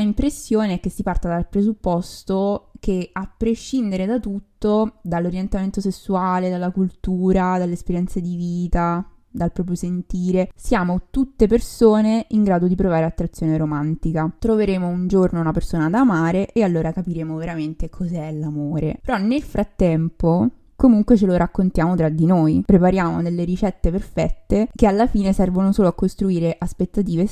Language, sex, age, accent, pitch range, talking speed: Italian, female, 20-39, native, 170-210 Hz, 145 wpm